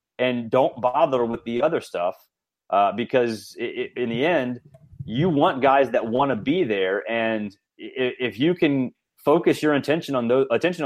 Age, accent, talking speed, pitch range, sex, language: 30-49, American, 155 wpm, 115-150 Hz, male, English